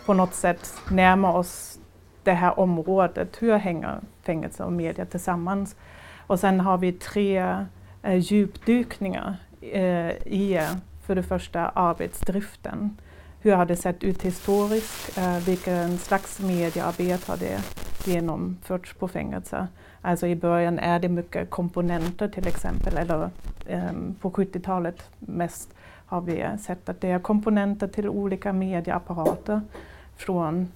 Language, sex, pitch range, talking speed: Swedish, female, 175-195 Hz, 130 wpm